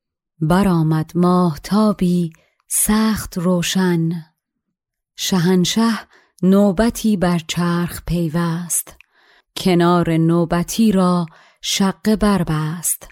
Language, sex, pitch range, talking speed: Persian, female, 170-195 Hz, 70 wpm